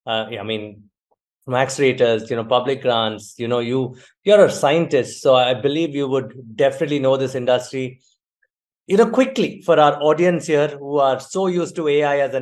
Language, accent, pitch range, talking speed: English, Indian, 135-175 Hz, 200 wpm